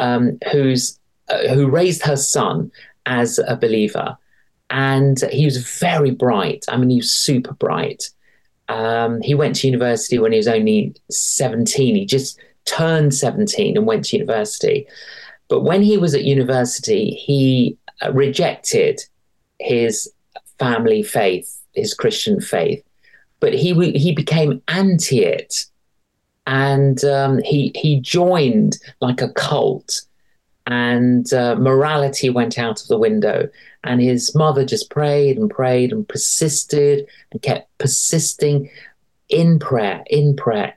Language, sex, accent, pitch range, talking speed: English, male, British, 130-200 Hz, 135 wpm